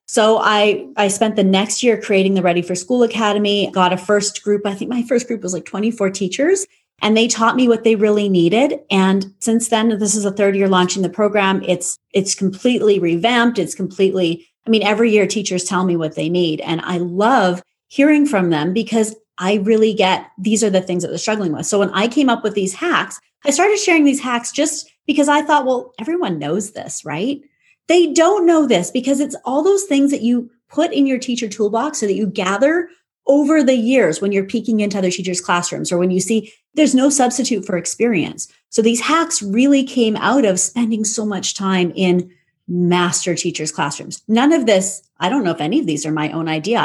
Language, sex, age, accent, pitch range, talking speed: English, female, 30-49, American, 190-250 Hz, 215 wpm